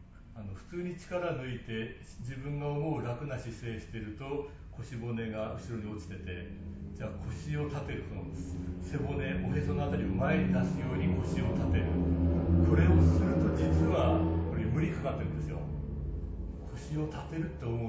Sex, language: male, Japanese